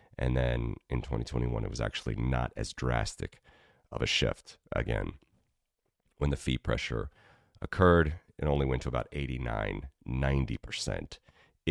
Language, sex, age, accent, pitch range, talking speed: English, male, 30-49, American, 65-75 Hz, 135 wpm